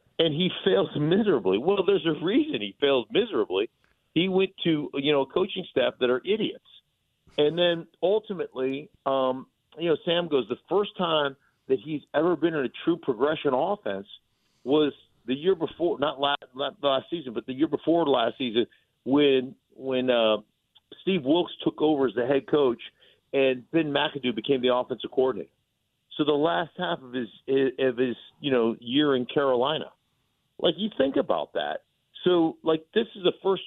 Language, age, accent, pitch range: English, 50-69, American, 130-170 Hz